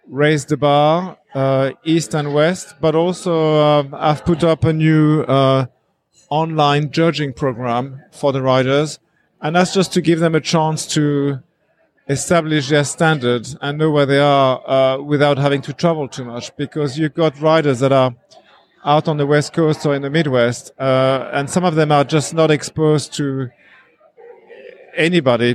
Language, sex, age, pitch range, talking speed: English, male, 50-69, 130-155 Hz, 170 wpm